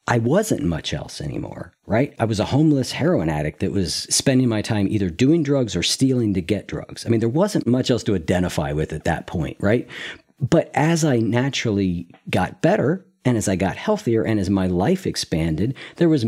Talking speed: 205 wpm